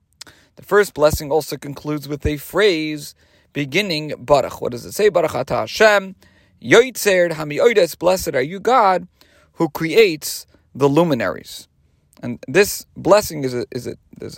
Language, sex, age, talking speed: English, male, 40-59, 140 wpm